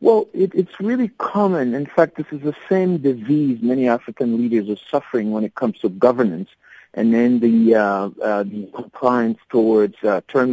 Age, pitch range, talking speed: 50-69, 120-155 Hz, 175 wpm